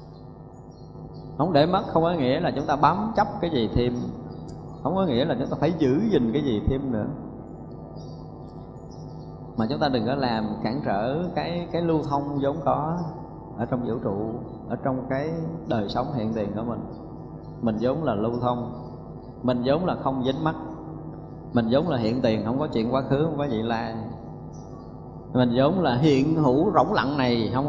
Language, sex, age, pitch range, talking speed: Vietnamese, male, 20-39, 110-145 Hz, 190 wpm